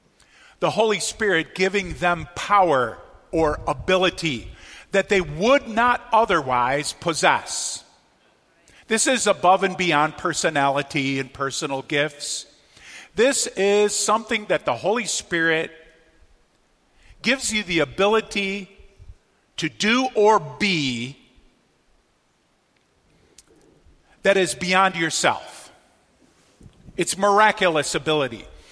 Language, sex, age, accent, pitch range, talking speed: English, male, 50-69, American, 145-200 Hz, 95 wpm